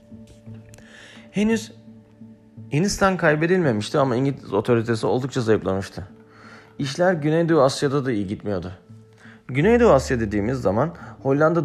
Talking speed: 100 wpm